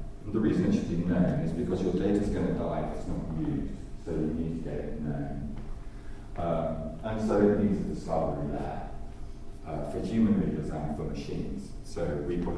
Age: 40-59